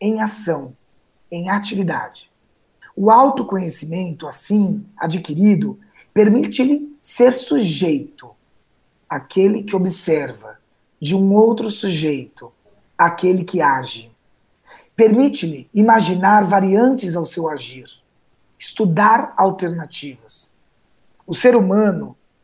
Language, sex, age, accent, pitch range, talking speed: Portuguese, male, 50-69, Brazilian, 165-210 Hz, 85 wpm